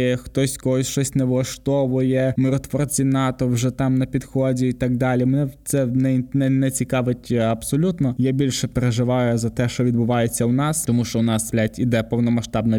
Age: 20-39